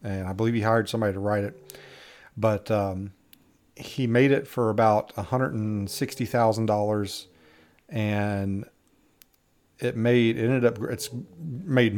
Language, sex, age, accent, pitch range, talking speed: English, male, 40-59, American, 105-120 Hz, 125 wpm